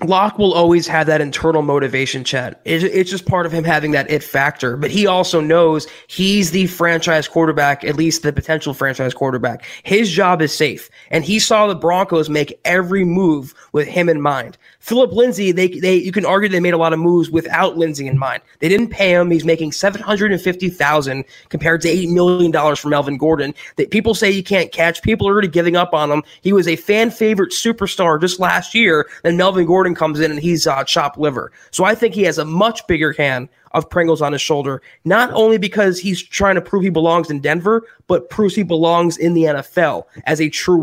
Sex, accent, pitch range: male, American, 155-190 Hz